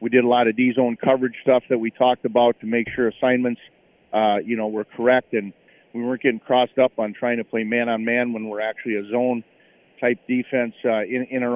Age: 50-69